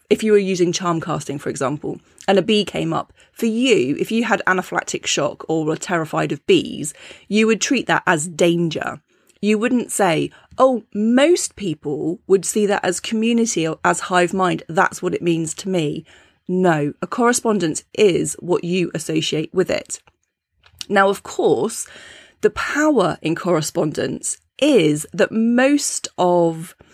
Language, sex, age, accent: English, female, 30-49, British